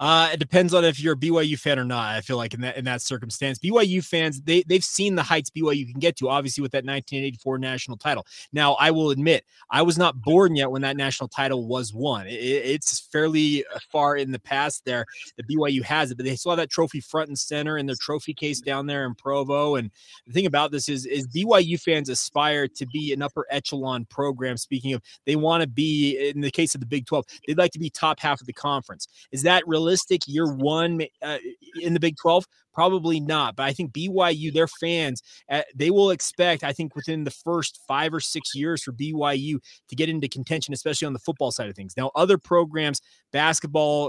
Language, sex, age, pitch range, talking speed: English, male, 20-39, 135-160 Hz, 225 wpm